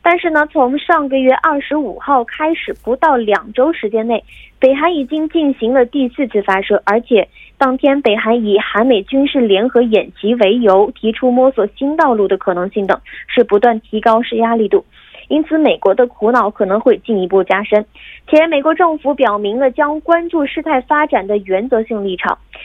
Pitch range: 215-290 Hz